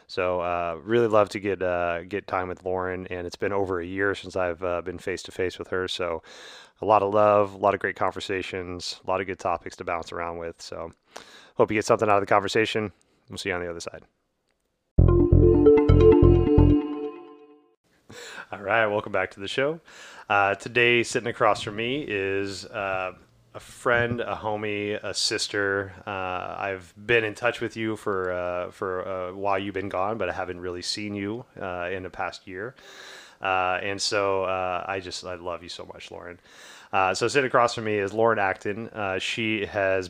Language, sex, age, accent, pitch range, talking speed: English, male, 30-49, American, 90-105 Hz, 200 wpm